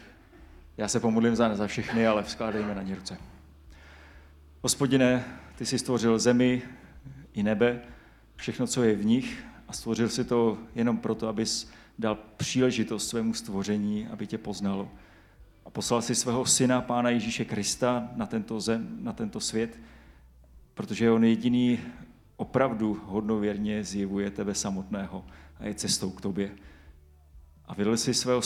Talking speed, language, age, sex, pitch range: 145 wpm, Czech, 30-49, male, 105-125 Hz